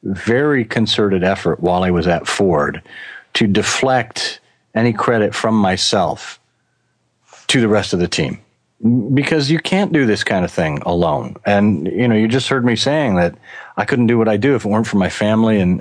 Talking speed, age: 195 wpm, 40-59